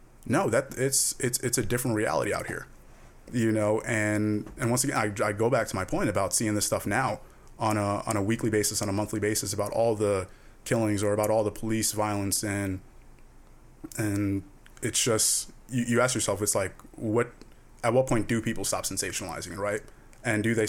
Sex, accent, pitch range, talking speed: male, American, 105-125 Hz, 205 wpm